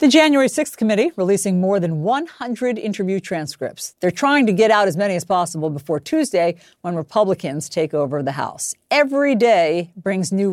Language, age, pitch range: English, 50-69, 165-235 Hz